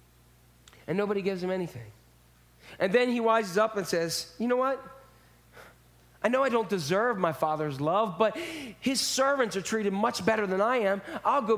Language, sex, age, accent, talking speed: English, male, 30-49, American, 180 wpm